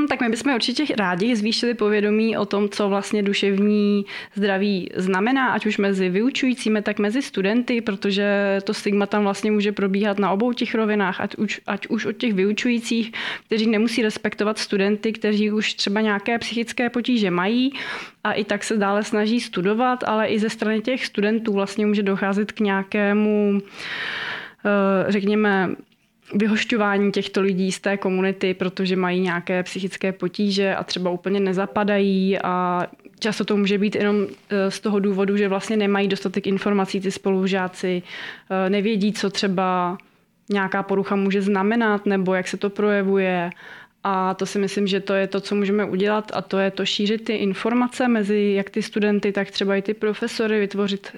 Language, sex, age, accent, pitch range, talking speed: Czech, female, 20-39, native, 195-215 Hz, 165 wpm